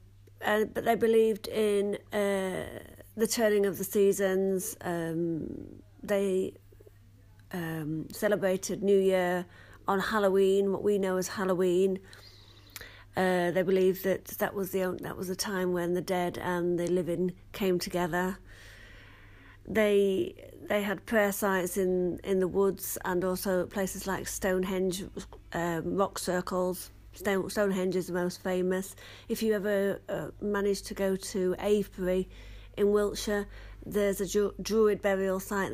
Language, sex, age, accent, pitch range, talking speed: English, female, 50-69, British, 170-195 Hz, 135 wpm